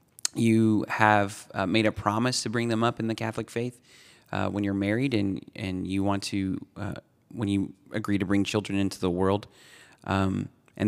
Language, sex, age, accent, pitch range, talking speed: English, male, 30-49, American, 100-110 Hz, 195 wpm